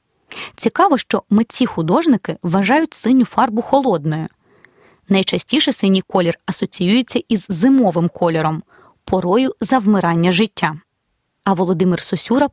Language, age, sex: Ukrainian, 20-39, female